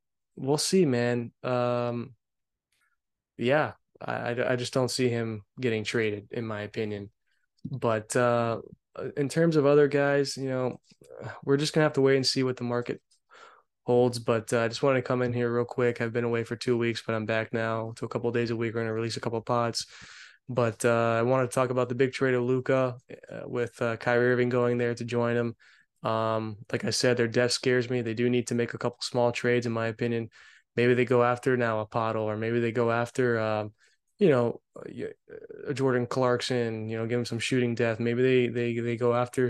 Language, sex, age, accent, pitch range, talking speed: English, male, 20-39, American, 115-125 Hz, 220 wpm